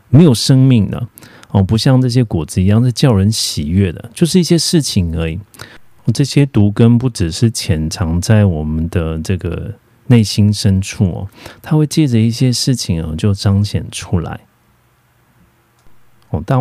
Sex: male